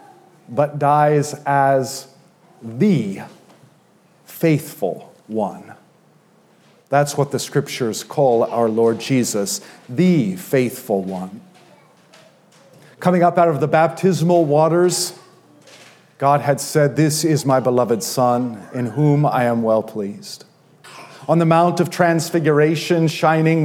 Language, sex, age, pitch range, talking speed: English, male, 50-69, 125-160 Hz, 110 wpm